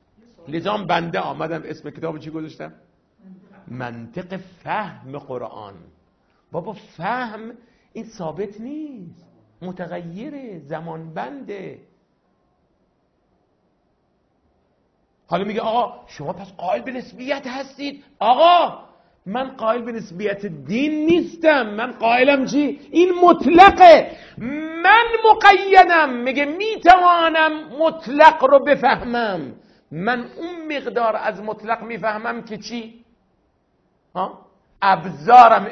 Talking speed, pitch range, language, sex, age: 90 wpm, 175-260 Hz, Persian, male, 50-69